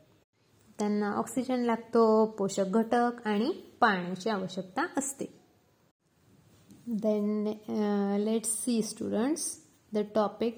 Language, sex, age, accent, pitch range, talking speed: Marathi, female, 20-39, native, 200-265 Hz, 85 wpm